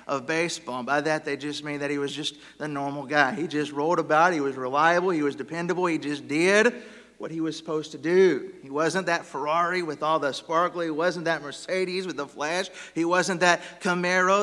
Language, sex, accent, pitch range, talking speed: English, male, American, 175-230 Hz, 220 wpm